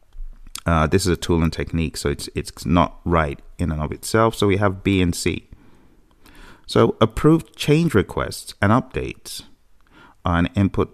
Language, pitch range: English, 80-105 Hz